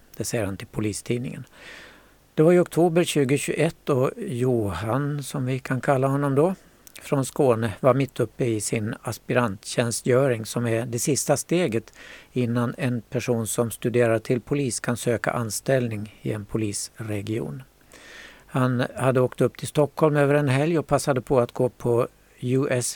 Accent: native